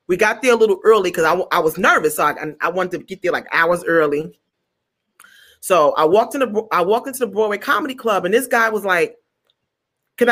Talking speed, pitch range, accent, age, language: 225 wpm, 190-275 Hz, American, 30-49, English